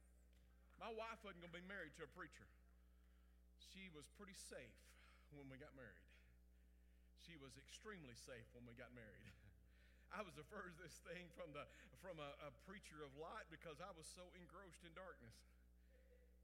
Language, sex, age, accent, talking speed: English, male, 50-69, American, 170 wpm